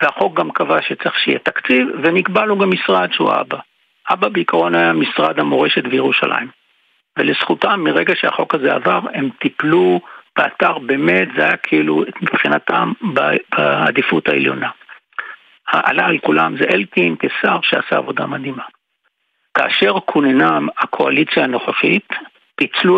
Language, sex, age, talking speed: Hebrew, male, 60-79, 125 wpm